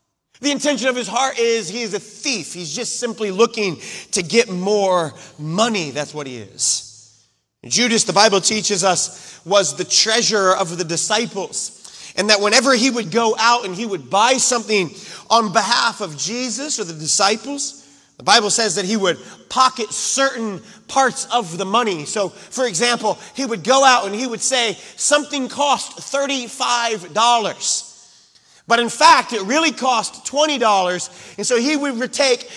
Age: 30-49